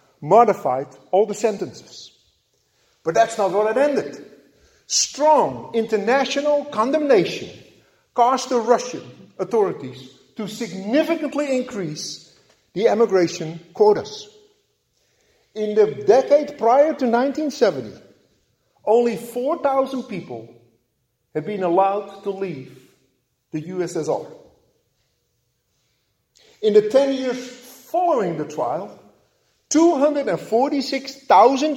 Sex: male